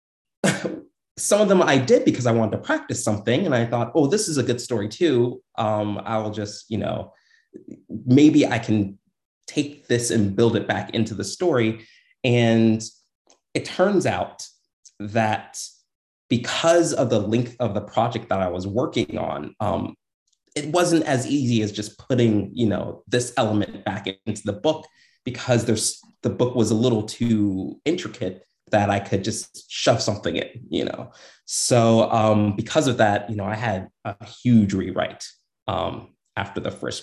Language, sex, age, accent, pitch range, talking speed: English, male, 30-49, American, 105-125 Hz, 170 wpm